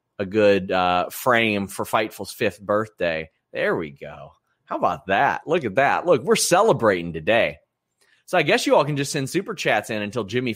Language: English